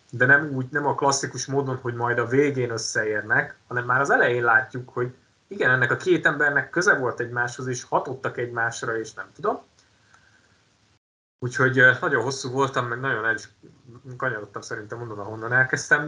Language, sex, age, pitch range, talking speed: Hungarian, male, 30-49, 115-140 Hz, 165 wpm